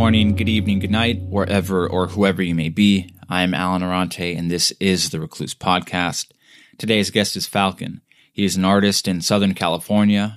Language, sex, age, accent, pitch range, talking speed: English, male, 20-39, American, 95-110 Hz, 190 wpm